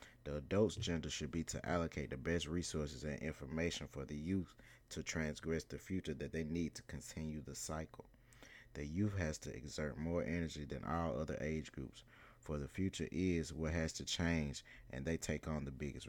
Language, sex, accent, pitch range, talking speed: English, male, American, 75-90 Hz, 195 wpm